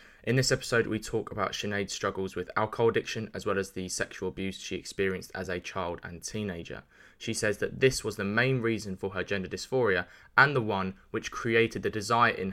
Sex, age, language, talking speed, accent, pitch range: male, 20-39, English, 210 wpm, British, 95-115 Hz